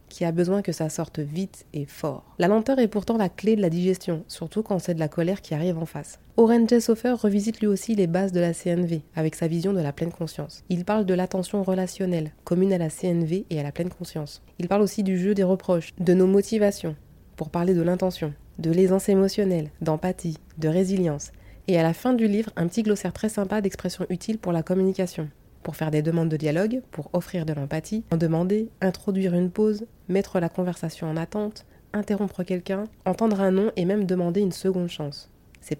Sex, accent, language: female, French, French